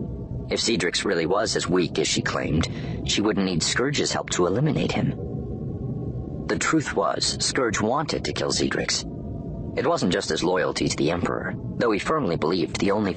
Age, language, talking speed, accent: 40-59, English, 180 wpm, American